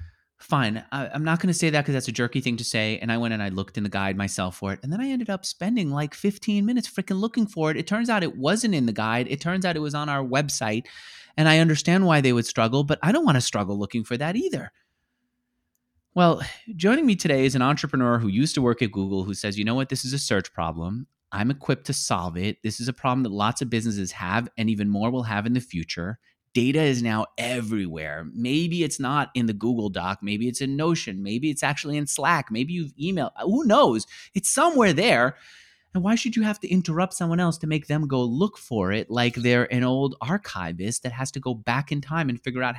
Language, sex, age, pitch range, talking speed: English, male, 30-49, 110-160 Hz, 245 wpm